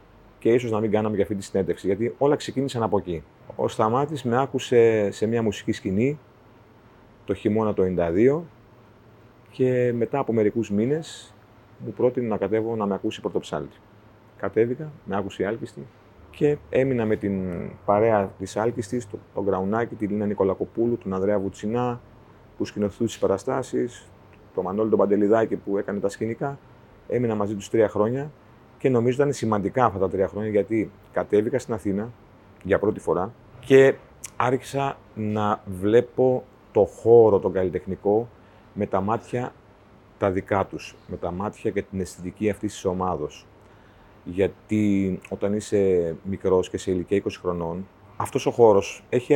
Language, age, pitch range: Greek, 30-49, 100-120 Hz